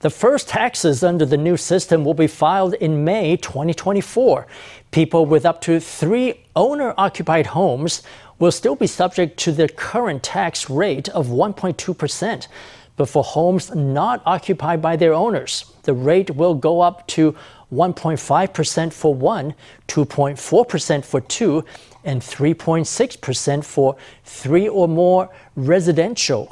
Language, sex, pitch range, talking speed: English, male, 150-185 Hz, 140 wpm